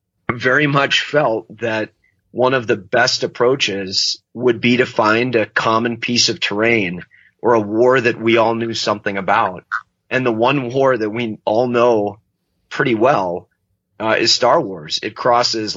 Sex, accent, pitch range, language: male, American, 105-120 Hz, English